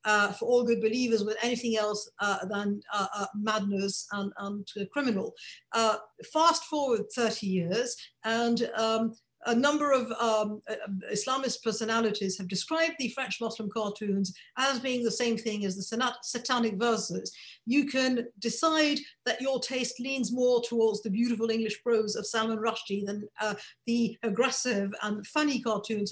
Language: English